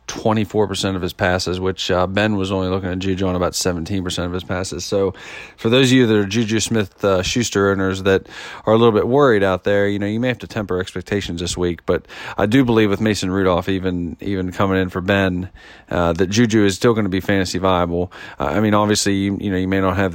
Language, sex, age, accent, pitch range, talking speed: English, male, 40-59, American, 95-110 Hz, 245 wpm